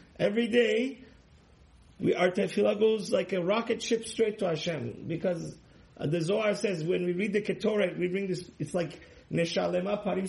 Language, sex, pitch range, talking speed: English, male, 160-205 Hz, 175 wpm